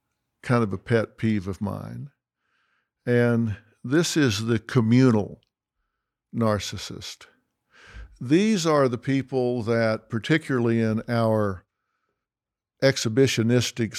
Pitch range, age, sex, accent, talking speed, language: 110-125 Hz, 60-79, male, American, 95 wpm, English